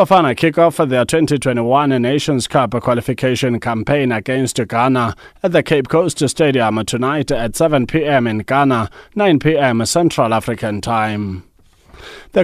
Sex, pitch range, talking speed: male, 120-145 Hz, 135 wpm